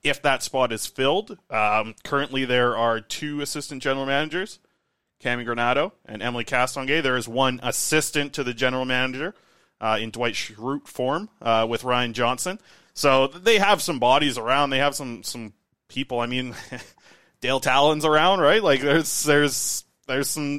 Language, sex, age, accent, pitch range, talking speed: English, male, 20-39, American, 120-145 Hz, 165 wpm